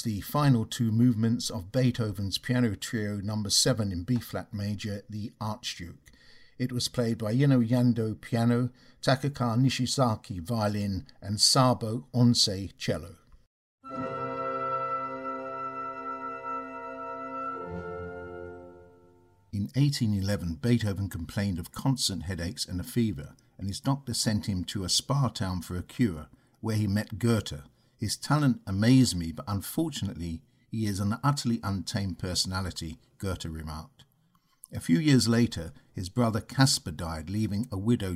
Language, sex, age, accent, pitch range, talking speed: English, male, 60-79, British, 95-125 Hz, 125 wpm